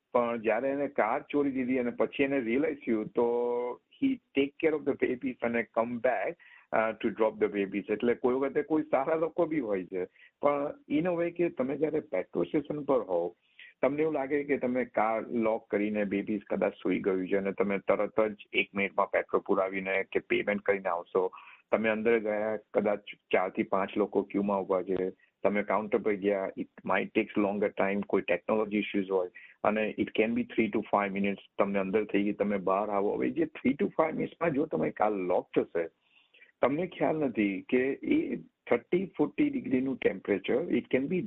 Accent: native